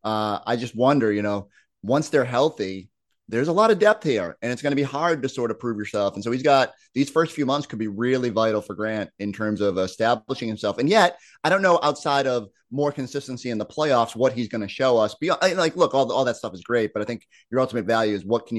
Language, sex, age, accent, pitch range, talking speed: English, male, 30-49, American, 105-135 Hz, 260 wpm